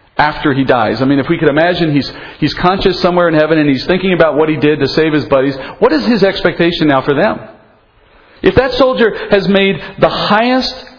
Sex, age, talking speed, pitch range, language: male, 40-59, 220 wpm, 150-195 Hz, English